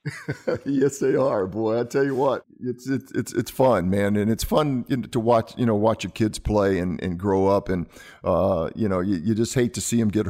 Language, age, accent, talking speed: English, 50-69, American, 240 wpm